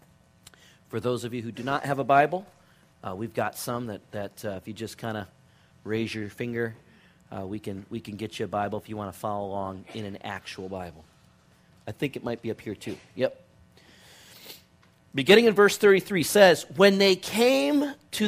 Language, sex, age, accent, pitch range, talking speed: English, male, 40-59, American, 110-180 Hz, 205 wpm